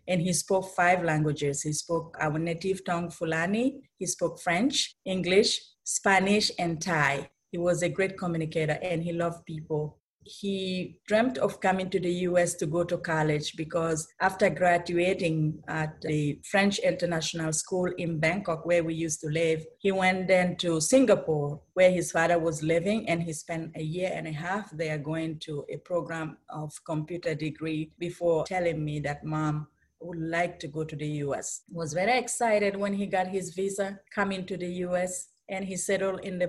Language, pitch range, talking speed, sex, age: English, 160-185 Hz, 180 wpm, female, 30-49